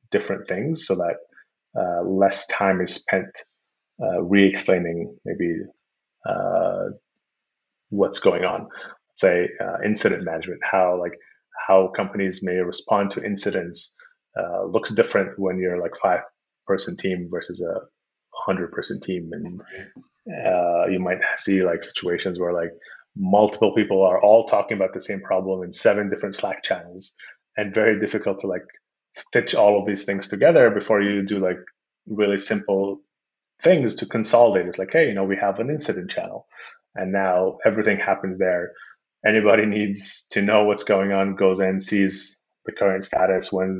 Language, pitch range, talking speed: English, 90-100 Hz, 160 wpm